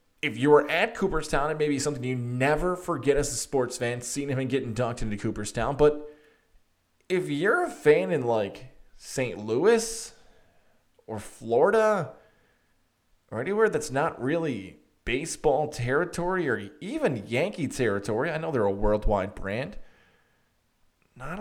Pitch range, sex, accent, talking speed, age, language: 125-185 Hz, male, American, 145 wpm, 20-39, English